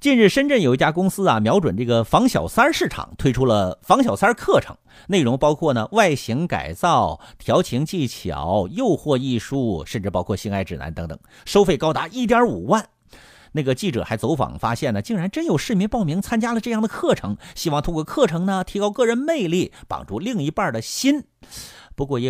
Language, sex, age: Chinese, male, 50-69